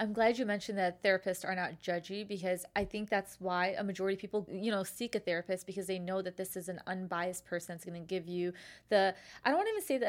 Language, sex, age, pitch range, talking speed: English, female, 20-39, 185-215 Hz, 270 wpm